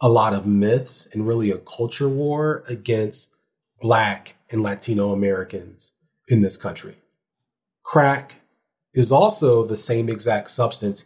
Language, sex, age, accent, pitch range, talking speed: English, male, 30-49, American, 100-130 Hz, 130 wpm